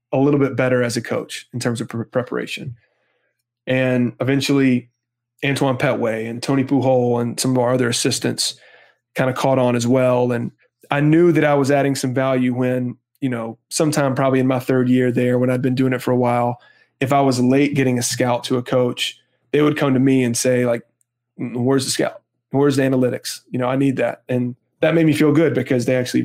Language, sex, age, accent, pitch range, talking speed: English, male, 20-39, American, 120-135 Hz, 215 wpm